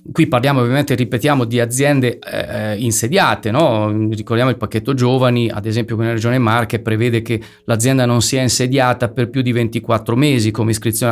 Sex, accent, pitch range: male, native, 115-140 Hz